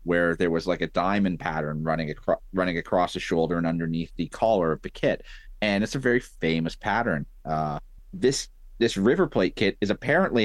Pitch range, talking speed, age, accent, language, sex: 85-115 Hz, 195 wpm, 30-49, American, English, male